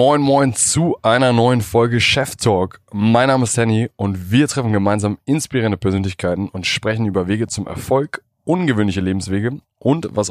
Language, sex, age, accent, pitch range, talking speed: German, male, 20-39, German, 100-125 Hz, 165 wpm